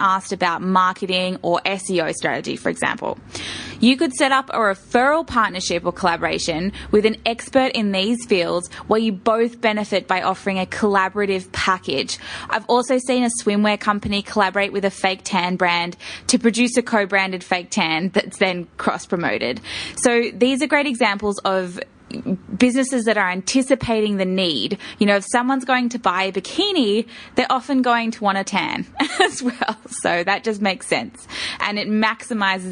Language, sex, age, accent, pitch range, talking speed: English, female, 20-39, Australian, 185-230 Hz, 165 wpm